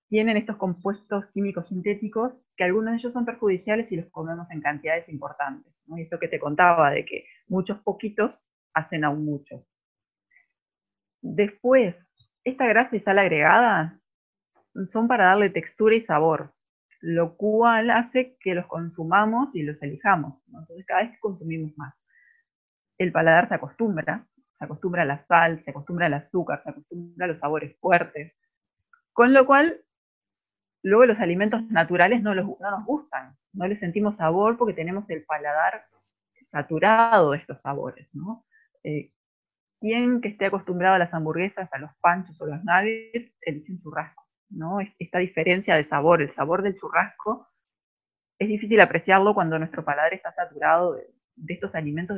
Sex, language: female, Spanish